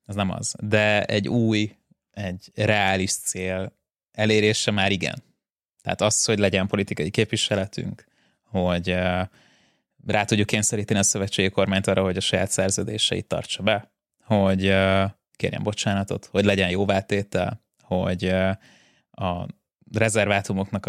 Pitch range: 95-110 Hz